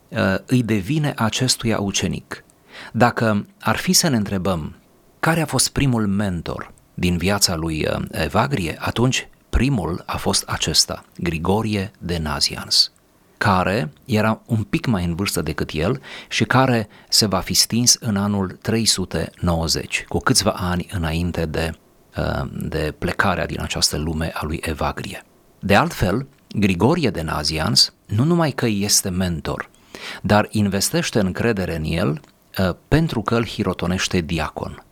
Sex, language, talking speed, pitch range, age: male, Romanian, 135 wpm, 85-115 Hz, 40-59